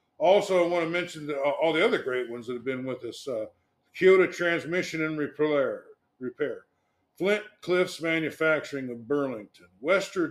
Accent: American